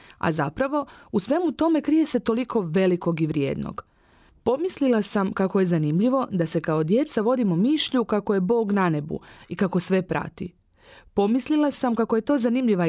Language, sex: Croatian, female